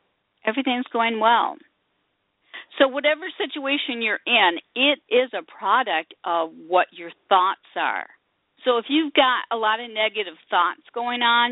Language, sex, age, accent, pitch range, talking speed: English, female, 50-69, American, 170-260 Hz, 145 wpm